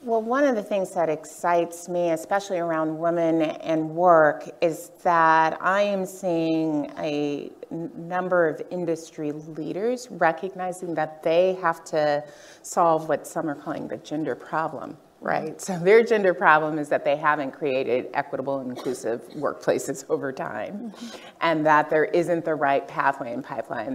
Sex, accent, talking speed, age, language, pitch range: female, American, 155 wpm, 30-49, English, 150-180 Hz